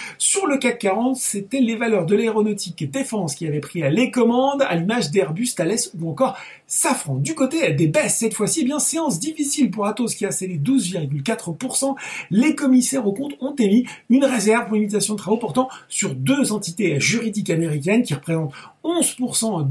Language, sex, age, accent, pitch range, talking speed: French, male, 40-59, French, 165-240 Hz, 185 wpm